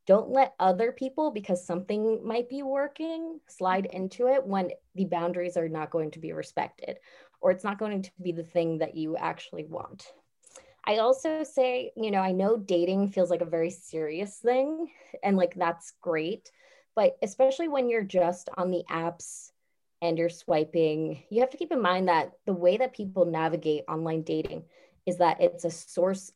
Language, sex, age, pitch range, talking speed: English, female, 20-39, 175-255 Hz, 185 wpm